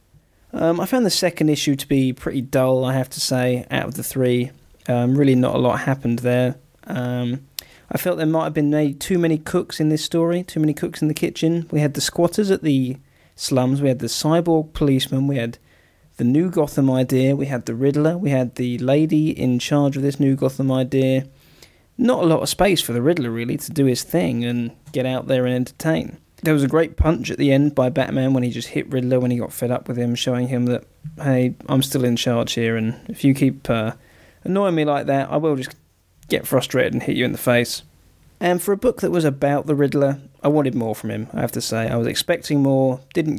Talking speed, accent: 235 wpm, British